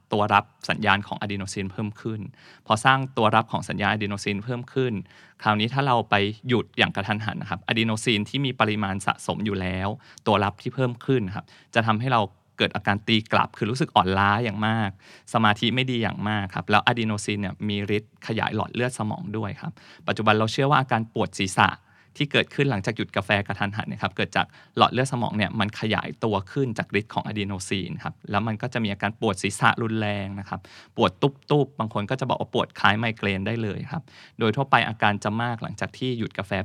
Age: 20-39